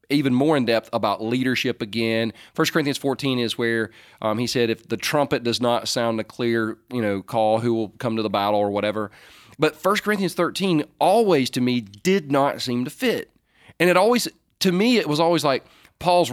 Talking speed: 205 wpm